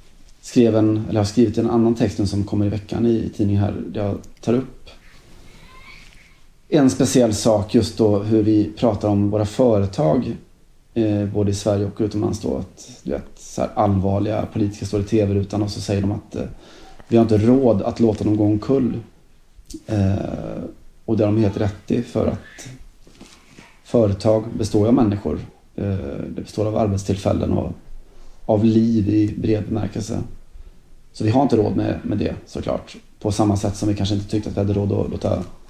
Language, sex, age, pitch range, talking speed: Swedish, male, 30-49, 100-110 Hz, 180 wpm